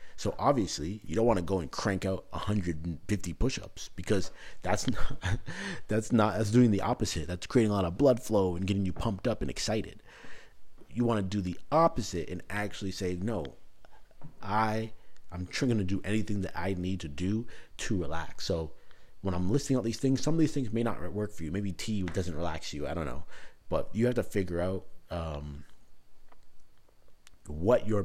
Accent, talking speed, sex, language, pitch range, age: American, 200 wpm, male, English, 85-110 Hz, 30-49